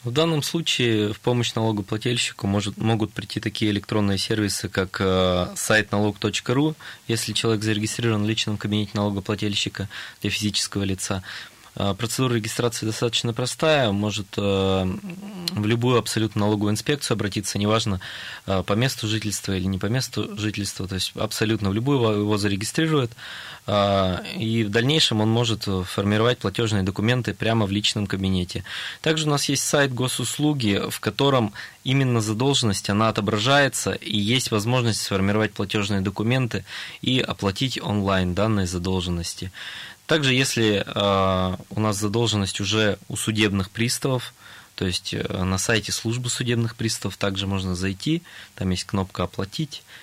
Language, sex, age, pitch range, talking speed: Russian, male, 20-39, 100-120 Hz, 135 wpm